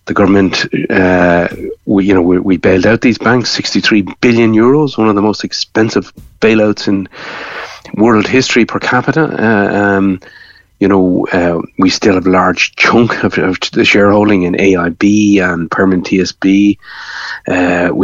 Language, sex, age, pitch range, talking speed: English, male, 30-49, 95-110 Hz, 155 wpm